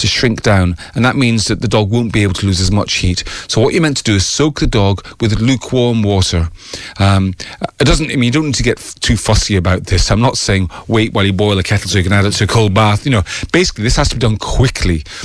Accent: British